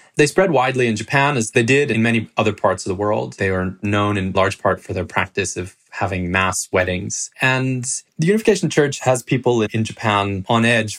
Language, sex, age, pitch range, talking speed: English, male, 20-39, 90-115 Hz, 210 wpm